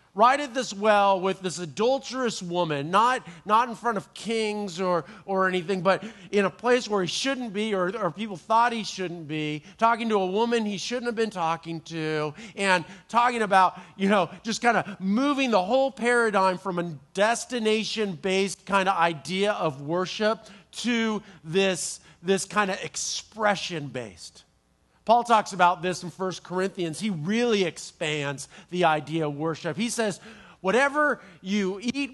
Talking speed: 160 wpm